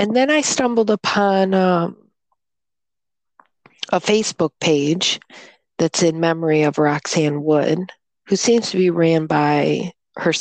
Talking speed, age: 125 wpm, 40-59